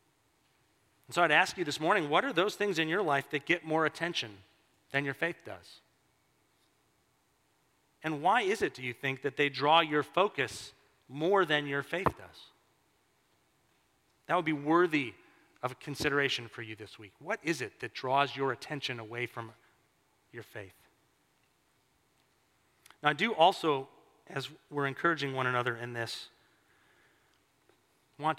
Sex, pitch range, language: male, 120-150 Hz, English